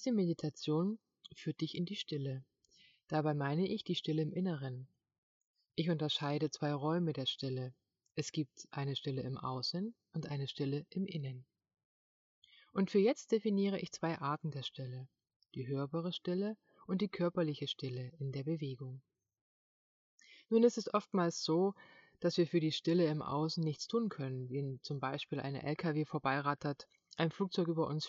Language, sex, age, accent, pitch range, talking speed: German, female, 30-49, German, 140-190 Hz, 160 wpm